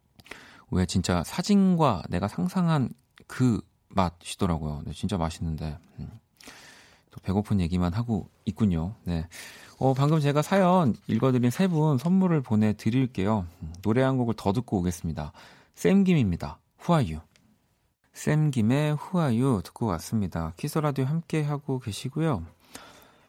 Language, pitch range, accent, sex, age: Korean, 95-140 Hz, native, male, 40-59